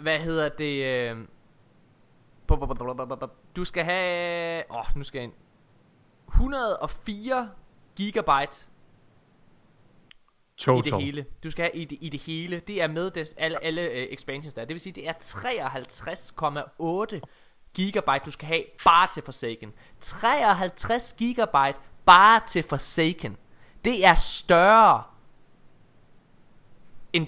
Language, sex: Danish, male